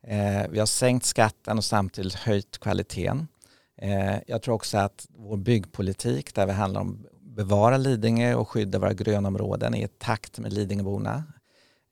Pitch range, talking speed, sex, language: 100-120 Hz, 155 wpm, male, Swedish